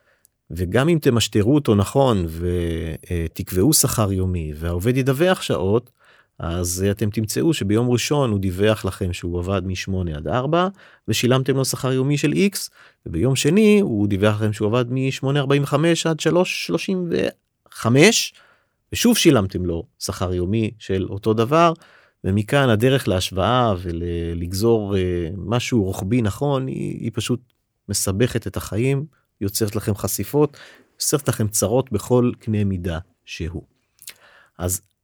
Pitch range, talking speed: 95-135 Hz, 125 wpm